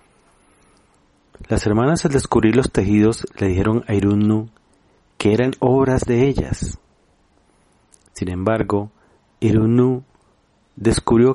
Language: Spanish